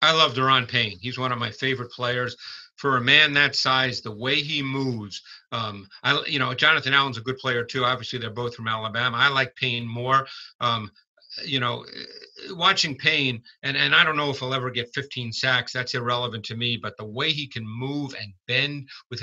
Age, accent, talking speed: 50-69, American, 210 wpm